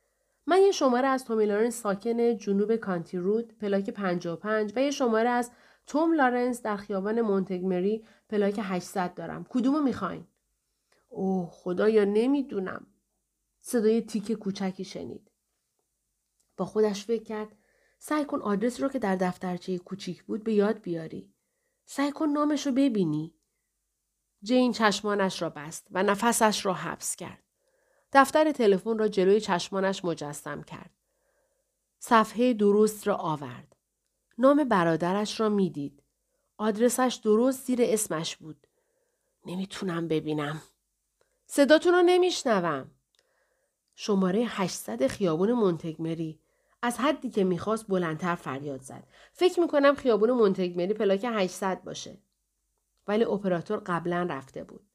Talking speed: 120 wpm